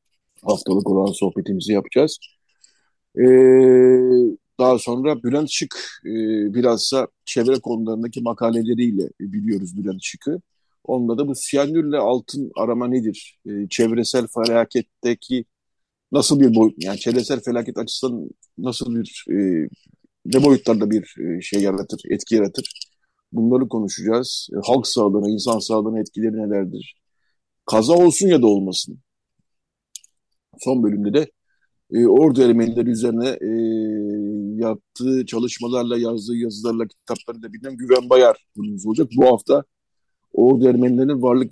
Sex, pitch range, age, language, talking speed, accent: male, 110-125 Hz, 50-69, Turkish, 120 wpm, native